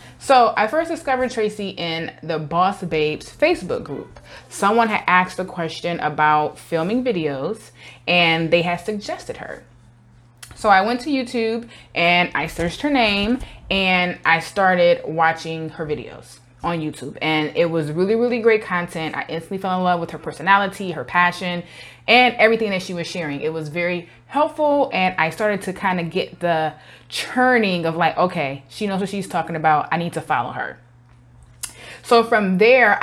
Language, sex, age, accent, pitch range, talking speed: English, female, 20-39, American, 160-225 Hz, 175 wpm